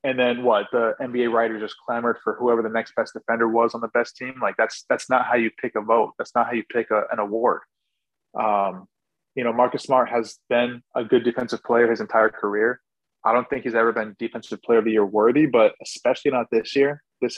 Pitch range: 115-135 Hz